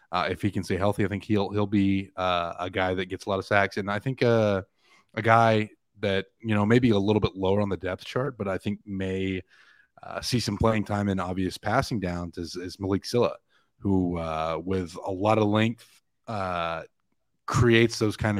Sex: male